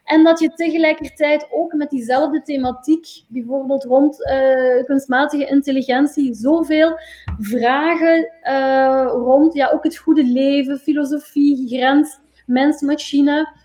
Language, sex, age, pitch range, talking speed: Dutch, female, 20-39, 255-295 Hz, 105 wpm